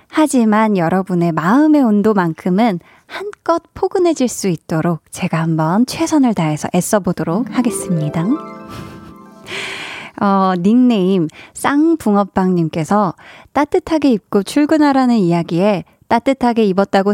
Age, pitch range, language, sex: 20-39, 190-260 Hz, Korean, female